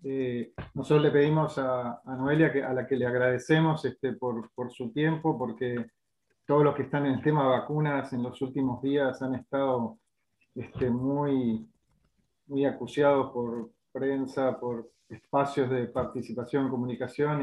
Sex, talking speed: male, 150 wpm